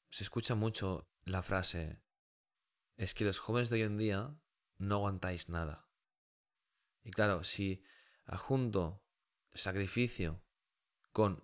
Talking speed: 115 wpm